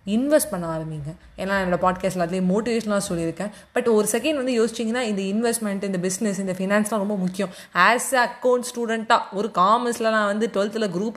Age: 20-39